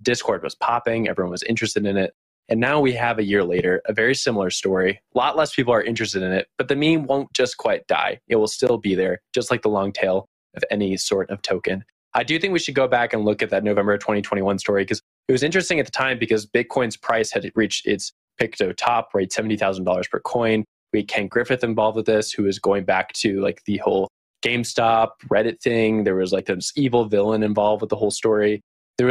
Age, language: 20-39, English